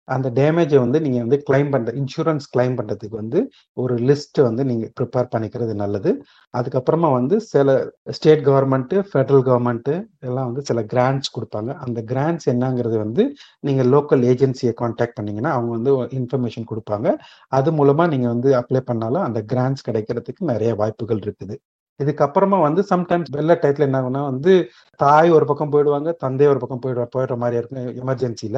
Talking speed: 155 wpm